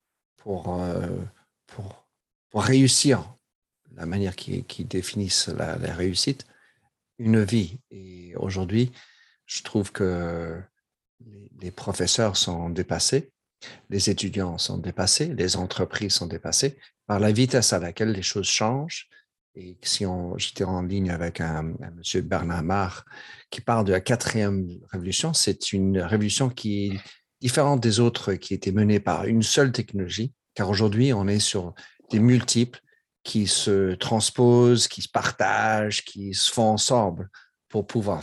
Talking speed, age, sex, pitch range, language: 140 wpm, 50-69, male, 95-125 Hz, French